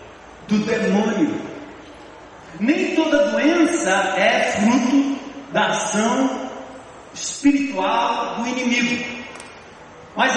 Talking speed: 75 wpm